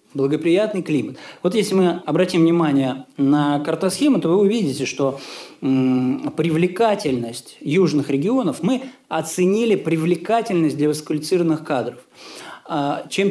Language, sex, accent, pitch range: Russian, male, native, 145-205 Hz